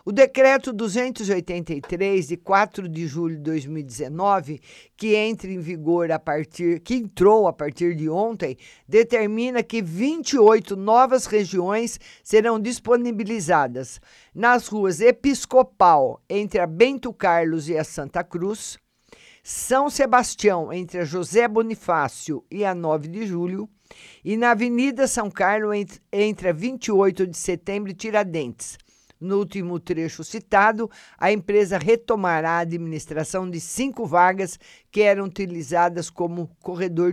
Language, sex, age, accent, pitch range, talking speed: Portuguese, male, 50-69, Brazilian, 170-220 Hz, 120 wpm